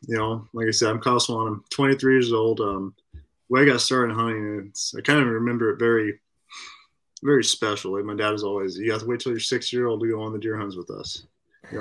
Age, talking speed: 20-39, 255 wpm